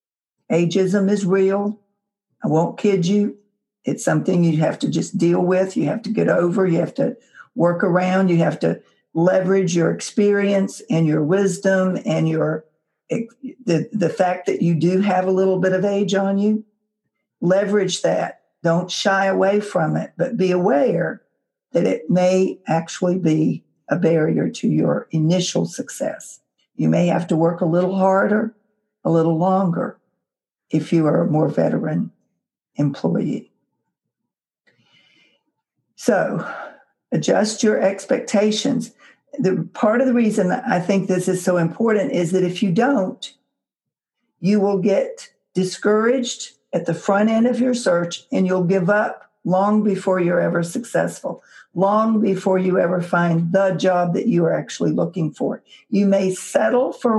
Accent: American